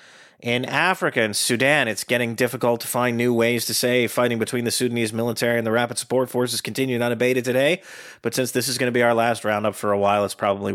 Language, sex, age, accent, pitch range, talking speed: English, male, 30-49, American, 105-130 Hz, 230 wpm